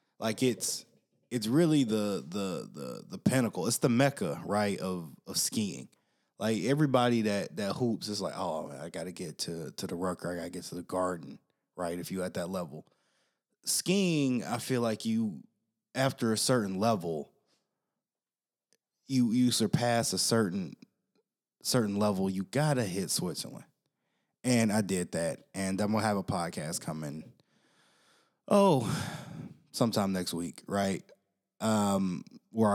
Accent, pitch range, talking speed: American, 95-130 Hz, 150 wpm